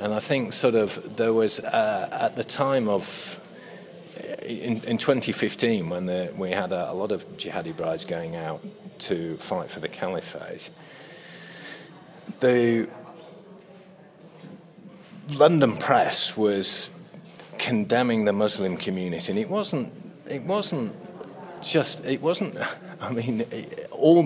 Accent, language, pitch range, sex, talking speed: British, English, 110-175 Hz, male, 125 wpm